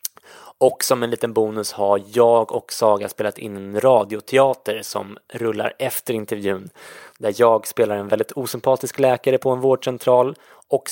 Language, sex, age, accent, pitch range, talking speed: English, male, 20-39, Swedish, 110-125 Hz, 155 wpm